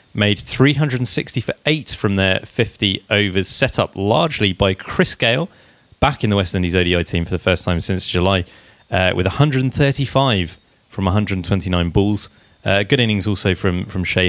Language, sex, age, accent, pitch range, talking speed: English, male, 30-49, British, 95-120 Hz, 170 wpm